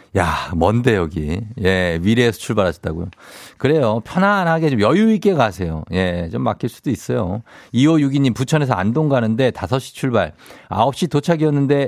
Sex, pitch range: male, 100-140 Hz